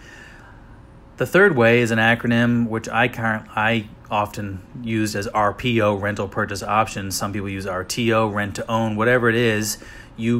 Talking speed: 150 wpm